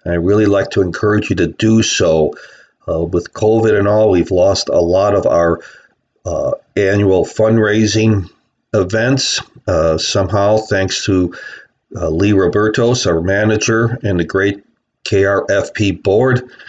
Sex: male